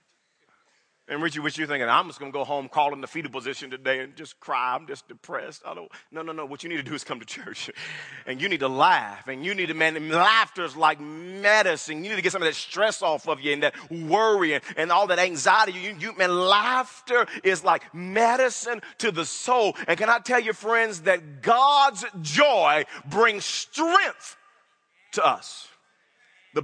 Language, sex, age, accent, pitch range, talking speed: English, male, 40-59, American, 155-220 Hz, 215 wpm